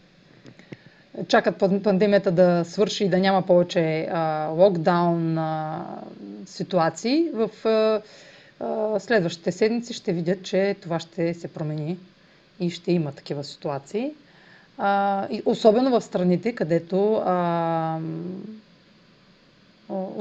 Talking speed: 100 wpm